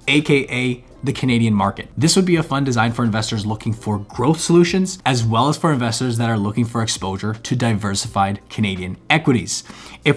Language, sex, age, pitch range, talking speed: English, male, 20-39, 115-135 Hz, 185 wpm